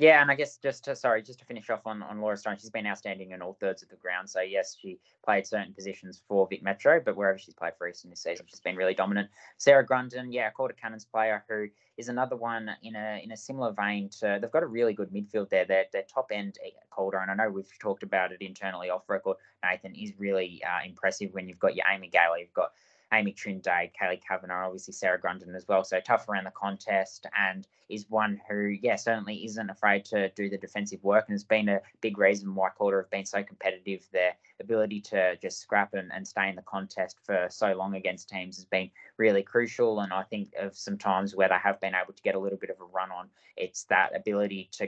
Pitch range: 95-110 Hz